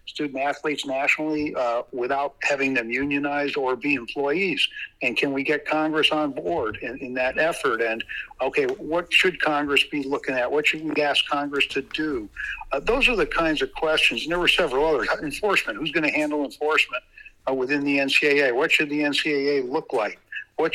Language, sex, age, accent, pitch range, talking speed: English, male, 60-79, American, 135-165 Hz, 190 wpm